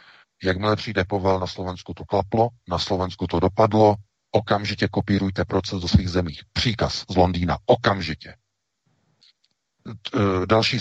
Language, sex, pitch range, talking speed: Czech, male, 85-100 Hz, 120 wpm